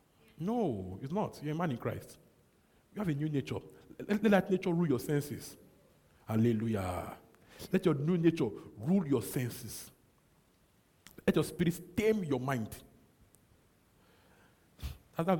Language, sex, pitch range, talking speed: English, male, 120-165 Hz, 135 wpm